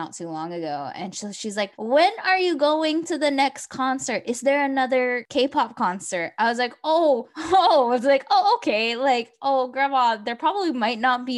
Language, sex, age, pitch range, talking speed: English, female, 10-29, 185-260 Hz, 205 wpm